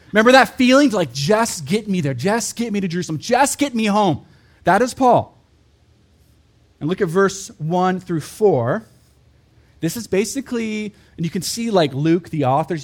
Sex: male